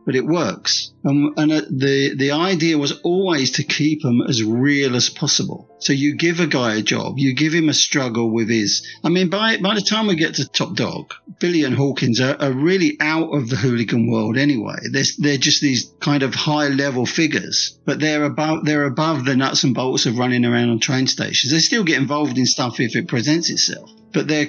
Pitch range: 130-160 Hz